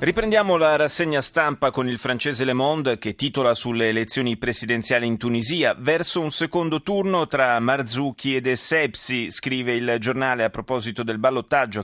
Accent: native